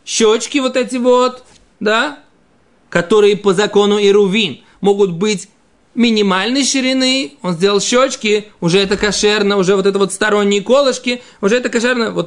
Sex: male